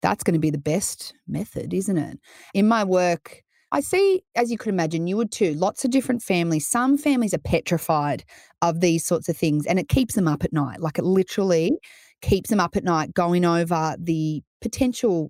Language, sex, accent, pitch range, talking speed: English, female, Australian, 160-225 Hz, 210 wpm